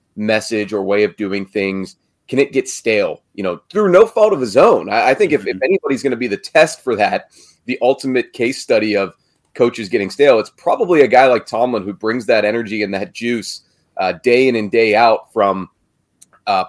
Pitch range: 105-130 Hz